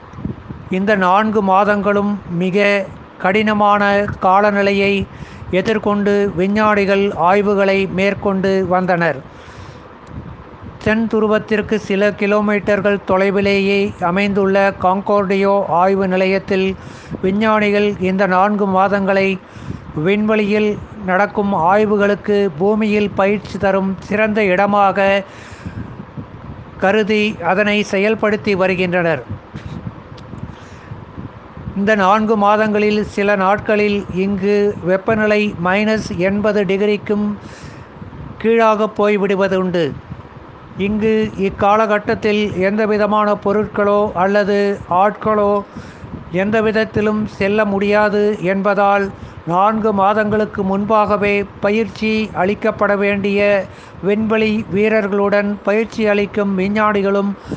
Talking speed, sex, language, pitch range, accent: 70 wpm, male, Tamil, 195-210 Hz, native